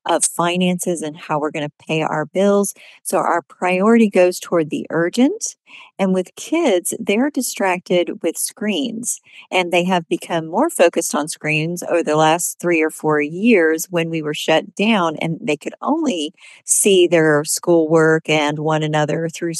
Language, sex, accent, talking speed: English, female, American, 165 wpm